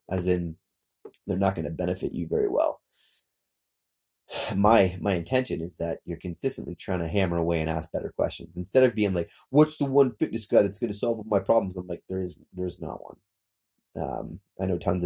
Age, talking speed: 30-49, 205 wpm